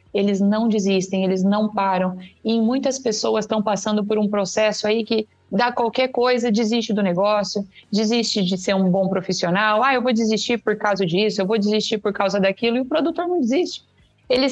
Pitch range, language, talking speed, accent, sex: 205-240 Hz, Portuguese, 195 wpm, Brazilian, female